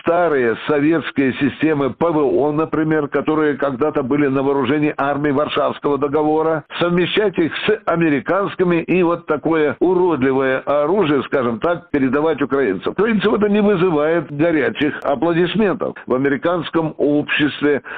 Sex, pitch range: male, 145-180 Hz